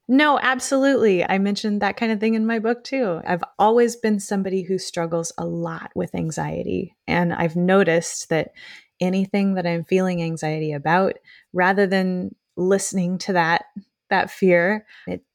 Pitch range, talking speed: 175-225 Hz, 155 wpm